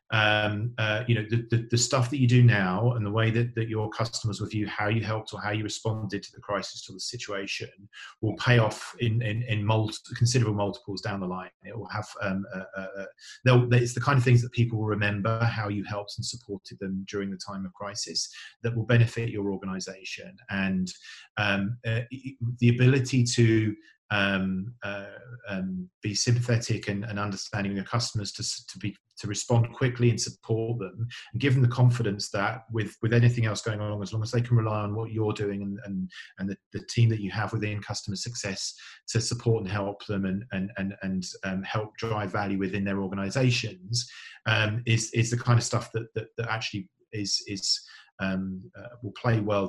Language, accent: English, British